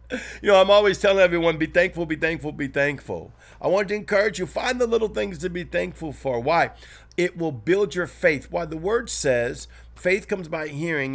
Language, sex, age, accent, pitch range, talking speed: English, male, 50-69, American, 125-165 Hz, 210 wpm